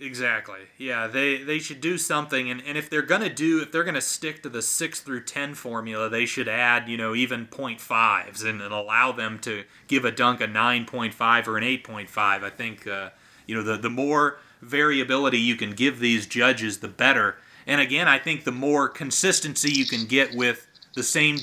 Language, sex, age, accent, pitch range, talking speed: English, male, 30-49, American, 120-155 Hz, 215 wpm